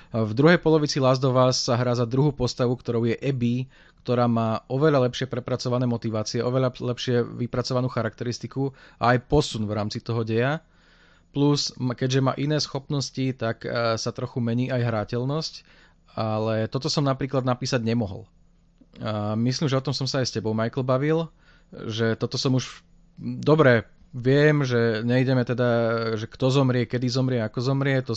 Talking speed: 160 wpm